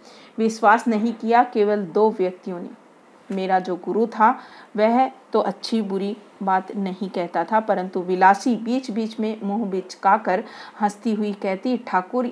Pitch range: 185-225 Hz